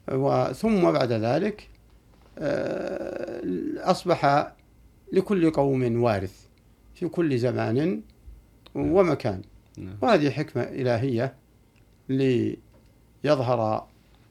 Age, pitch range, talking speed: 60-79, 115-145 Hz, 65 wpm